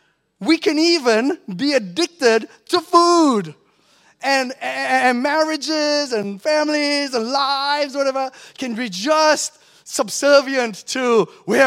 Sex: male